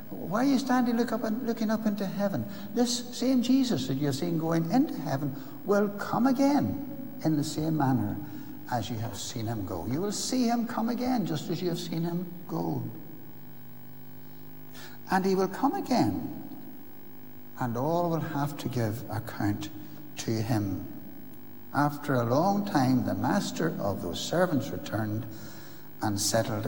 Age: 60-79